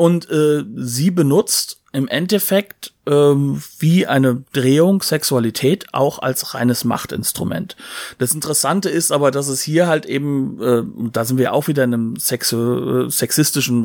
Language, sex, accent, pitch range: German, male, German, 120-155 Hz